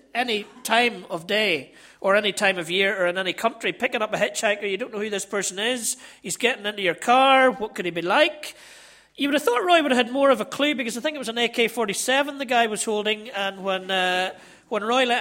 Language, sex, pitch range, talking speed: English, male, 195-250 Hz, 245 wpm